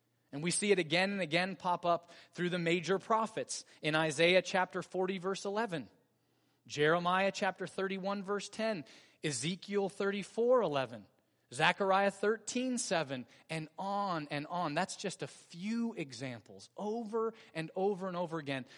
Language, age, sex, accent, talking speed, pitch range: English, 30-49, male, American, 145 wpm, 145-200 Hz